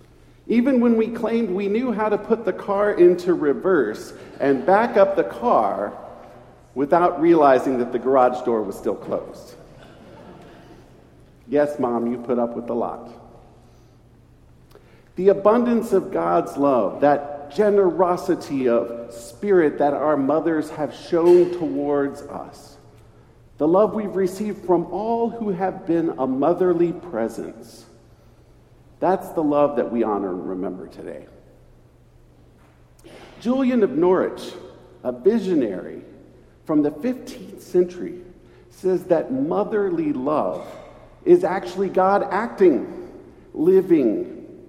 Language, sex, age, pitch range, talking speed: English, male, 50-69, 140-215 Hz, 120 wpm